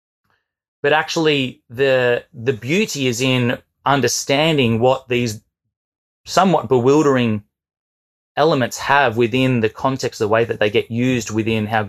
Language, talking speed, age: English, 130 wpm, 20-39